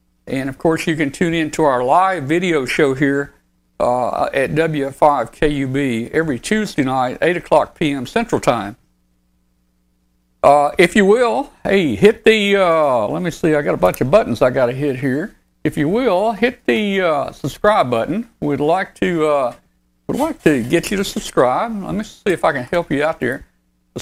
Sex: male